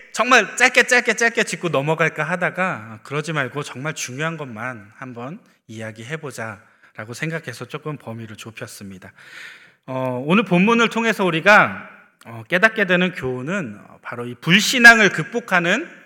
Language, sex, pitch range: Korean, male, 140-215 Hz